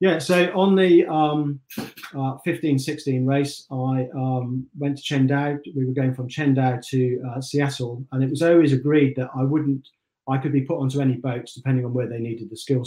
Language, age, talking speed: English, 40-59, 205 wpm